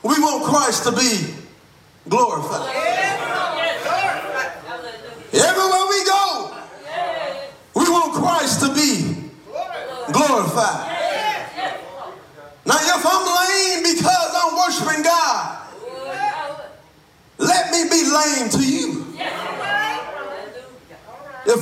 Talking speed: 85 wpm